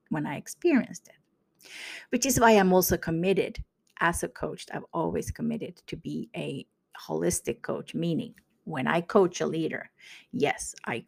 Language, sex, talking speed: English, female, 155 wpm